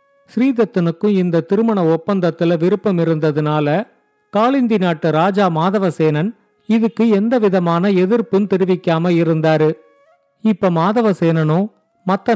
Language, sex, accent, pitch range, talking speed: Tamil, male, native, 165-210 Hz, 90 wpm